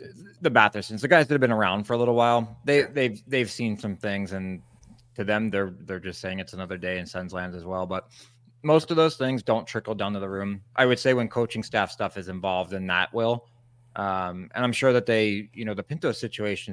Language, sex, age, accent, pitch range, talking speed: English, male, 20-39, American, 95-120 Hz, 240 wpm